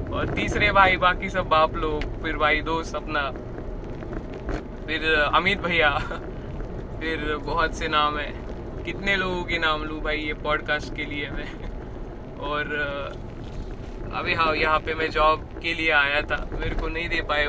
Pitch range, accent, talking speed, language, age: 150-175 Hz, native, 125 wpm, Marathi, 20-39